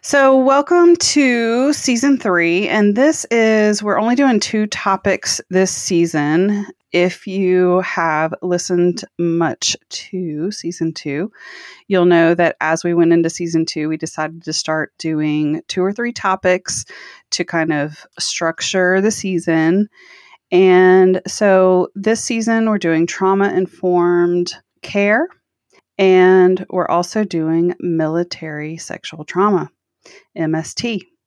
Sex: female